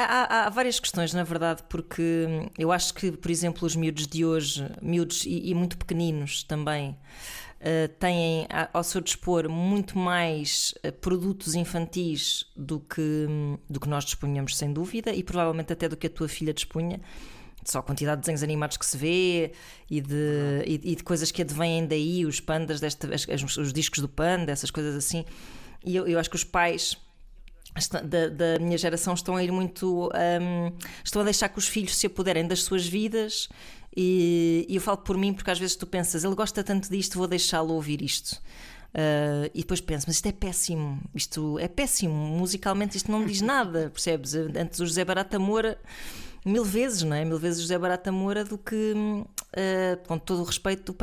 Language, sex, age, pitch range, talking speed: Portuguese, female, 20-39, 160-190 Hz, 185 wpm